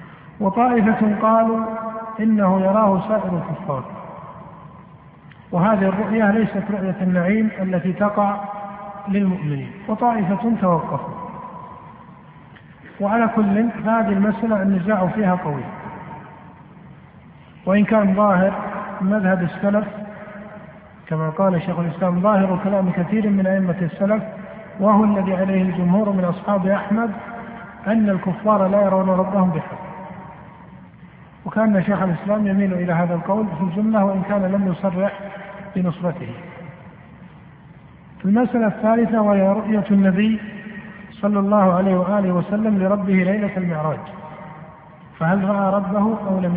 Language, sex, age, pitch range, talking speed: Arabic, male, 50-69, 175-210 Hz, 105 wpm